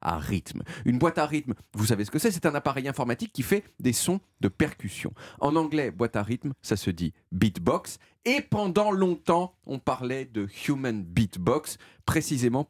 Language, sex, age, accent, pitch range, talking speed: French, male, 40-59, French, 105-170 Hz, 185 wpm